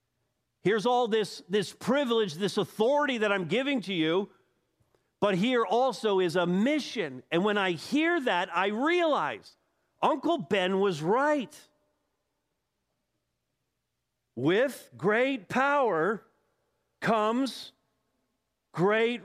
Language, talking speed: English, 105 wpm